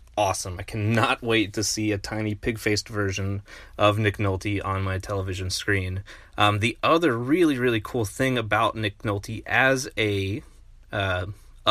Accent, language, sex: American, English, male